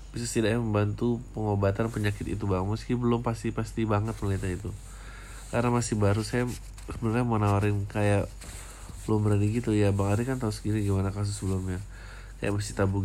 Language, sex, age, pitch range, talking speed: Indonesian, male, 20-39, 100-115 Hz, 155 wpm